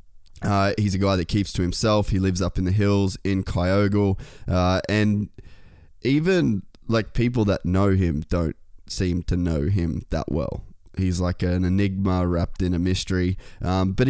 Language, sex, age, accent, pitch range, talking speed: English, male, 20-39, Australian, 90-105 Hz, 175 wpm